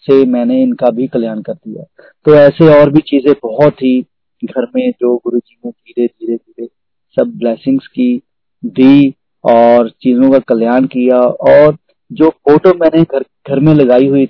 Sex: male